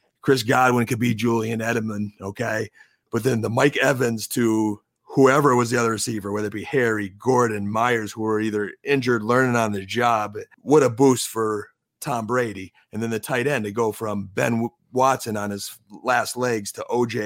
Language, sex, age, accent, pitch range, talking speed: English, male, 30-49, American, 110-130 Hz, 190 wpm